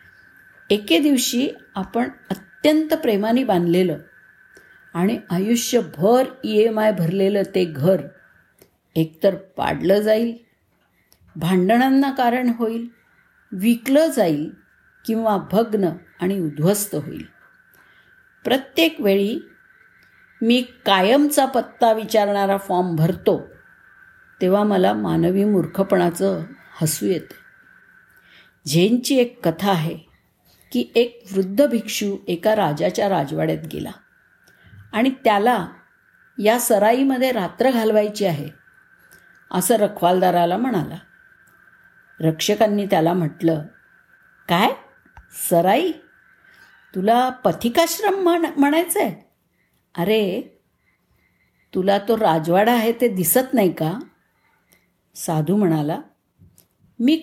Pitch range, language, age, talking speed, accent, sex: 190-275 Hz, Marathi, 50-69, 90 wpm, native, female